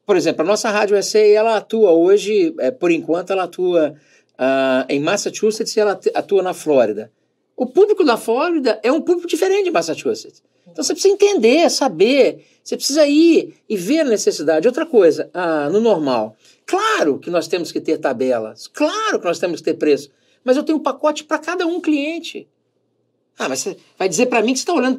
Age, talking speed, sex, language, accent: 50-69, 190 wpm, male, Portuguese, Brazilian